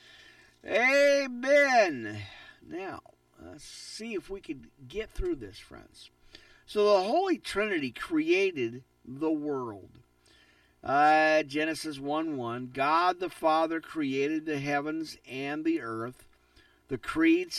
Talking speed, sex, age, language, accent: 110 wpm, male, 50-69, English, American